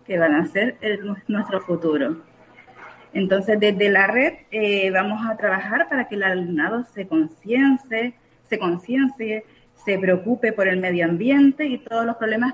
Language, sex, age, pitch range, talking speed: Spanish, female, 30-49, 185-245 Hz, 155 wpm